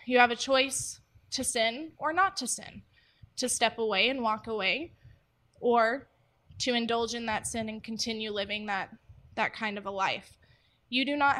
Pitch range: 220-265 Hz